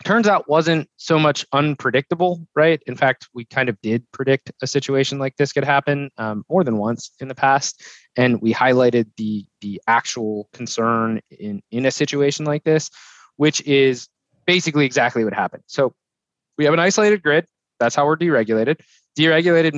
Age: 20-39